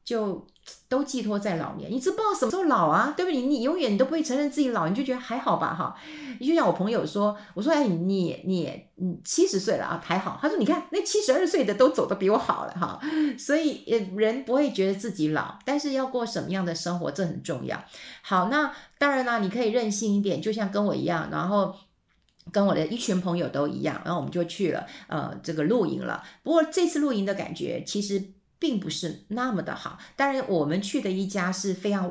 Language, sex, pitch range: Chinese, female, 180-250 Hz